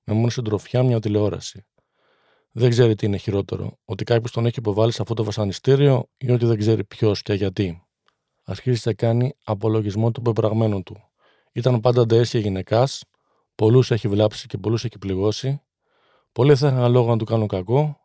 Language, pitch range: Greek, 110-125 Hz